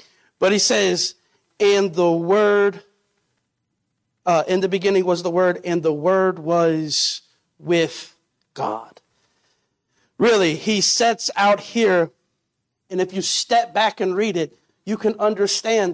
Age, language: 50-69, English